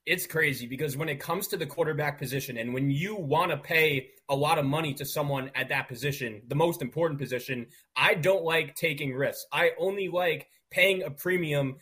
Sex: male